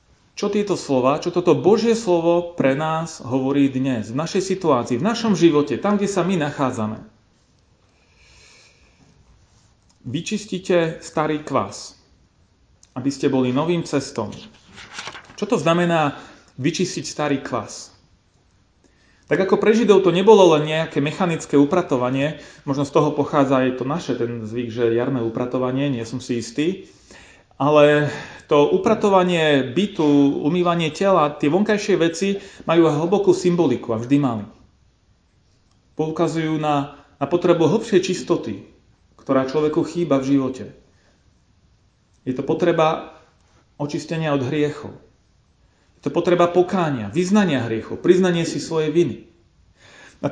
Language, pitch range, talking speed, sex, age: Slovak, 130-175 Hz, 125 wpm, male, 30-49